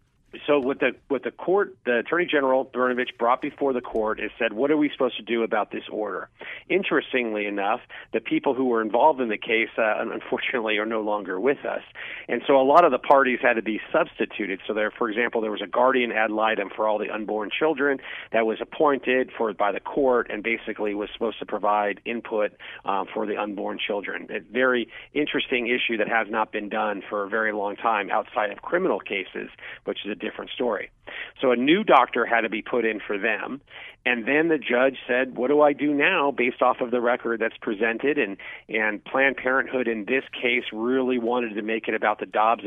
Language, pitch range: English, 110-135 Hz